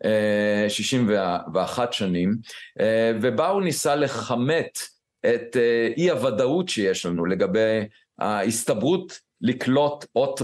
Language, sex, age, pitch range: Hebrew, male, 50-69, 110-140 Hz